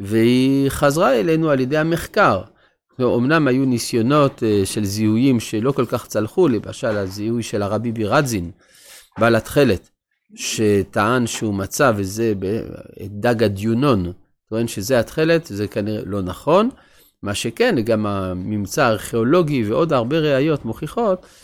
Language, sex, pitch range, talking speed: Hebrew, male, 110-145 Hz, 125 wpm